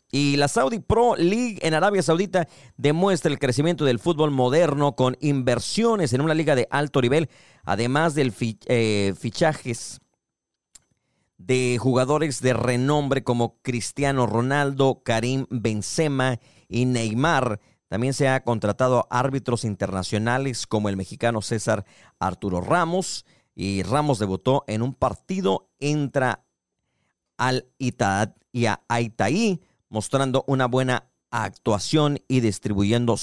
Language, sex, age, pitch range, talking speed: Spanish, male, 40-59, 110-145 Hz, 125 wpm